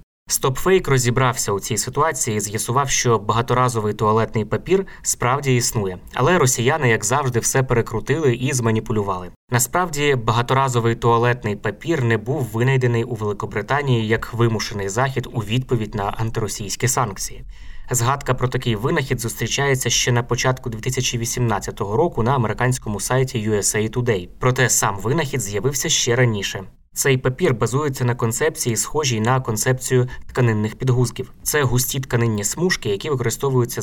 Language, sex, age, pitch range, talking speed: Ukrainian, male, 20-39, 110-130 Hz, 135 wpm